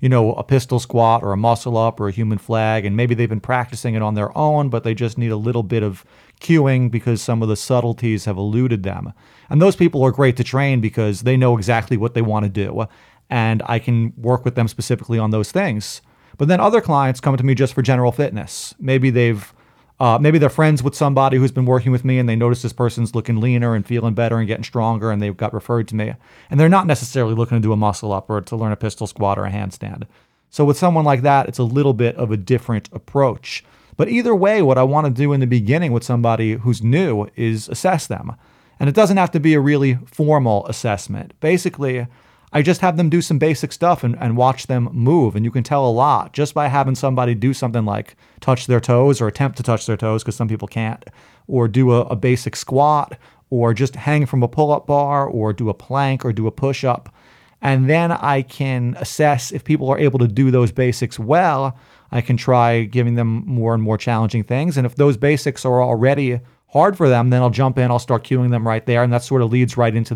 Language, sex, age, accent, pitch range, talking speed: English, male, 30-49, American, 115-135 Hz, 240 wpm